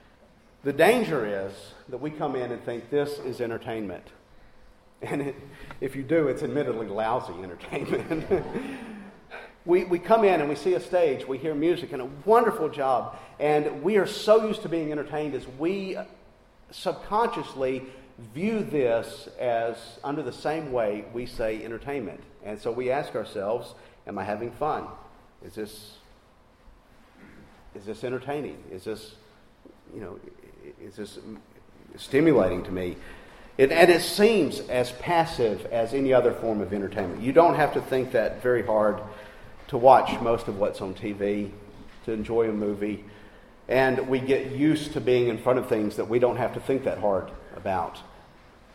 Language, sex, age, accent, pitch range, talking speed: English, male, 50-69, American, 105-150 Hz, 160 wpm